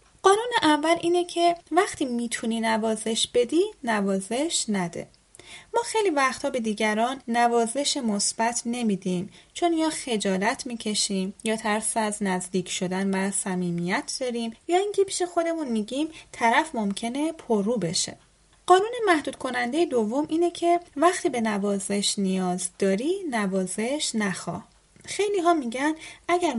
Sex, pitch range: female, 205-305 Hz